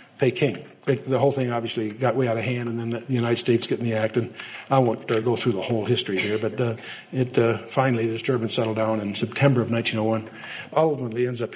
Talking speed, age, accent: 245 wpm, 60-79, American